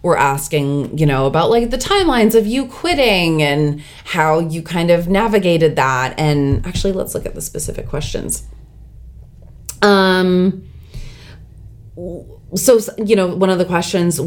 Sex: female